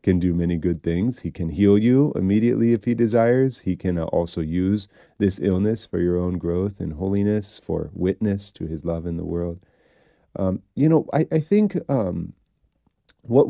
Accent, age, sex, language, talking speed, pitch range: American, 30-49, male, English, 180 wpm, 90-110 Hz